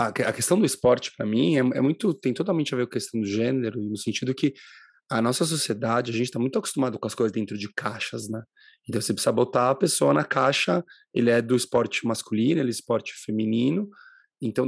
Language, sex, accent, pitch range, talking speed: Portuguese, male, Brazilian, 115-160 Hz, 220 wpm